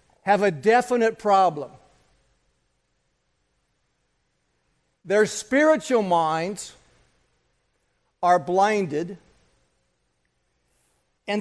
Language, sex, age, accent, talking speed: English, male, 60-79, American, 55 wpm